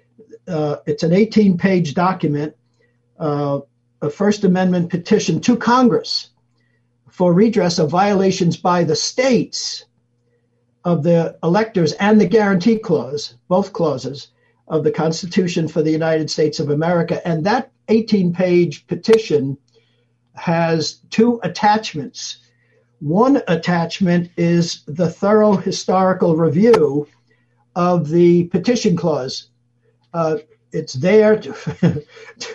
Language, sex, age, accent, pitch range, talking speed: English, male, 50-69, American, 150-195 Hz, 110 wpm